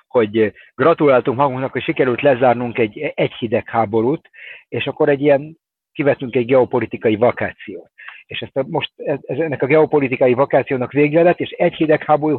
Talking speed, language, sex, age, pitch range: 150 wpm, Hungarian, male, 60-79, 125-155 Hz